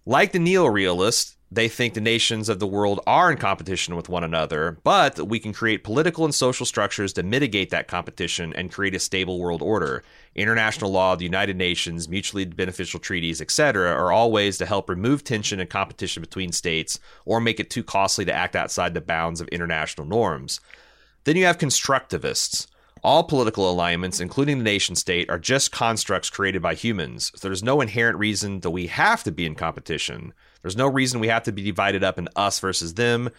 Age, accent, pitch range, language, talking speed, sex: 30-49, American, 90-115 Hz, English, 200 wpm, male